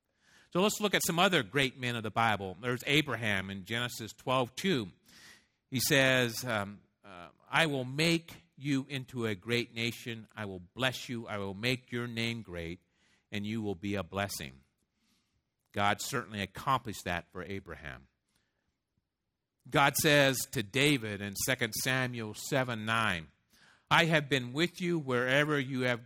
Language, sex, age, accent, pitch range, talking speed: English, male, 50-69, American, 100-130 Hz, 155 wpm